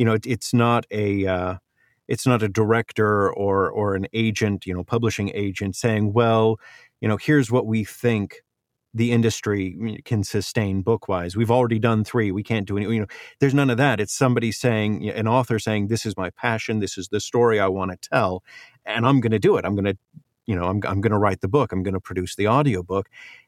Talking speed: 225 wpm